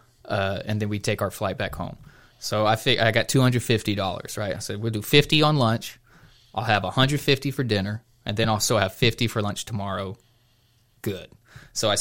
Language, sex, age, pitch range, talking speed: English, male, 20-39, 105-120 Hz, 195 wpm